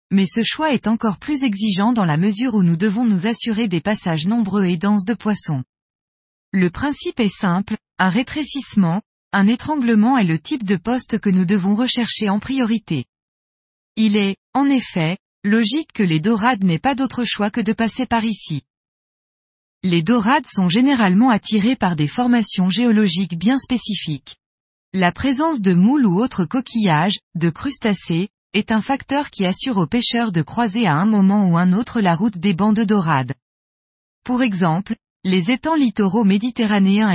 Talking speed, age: 170 wpm, 20-39